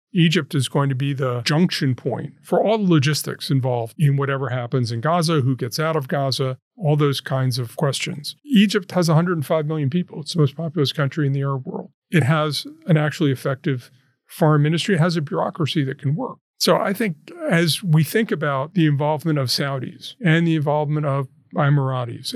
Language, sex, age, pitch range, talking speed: English, male, 40-59, 140-180 Hz, 195 wpm